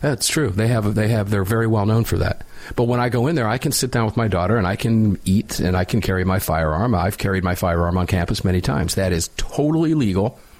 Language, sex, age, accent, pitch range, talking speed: English, male, 50-69, American, 100-135 Hz, 265 wpm